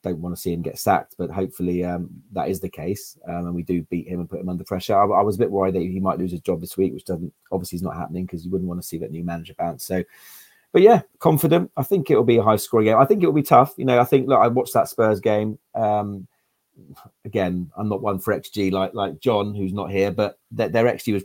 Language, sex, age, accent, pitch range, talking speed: English, male, 30-49, British, 90-105 Hz, 280 wpm